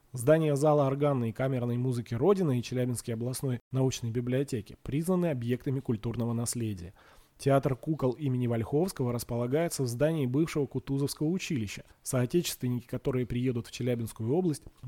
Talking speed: 130 wpm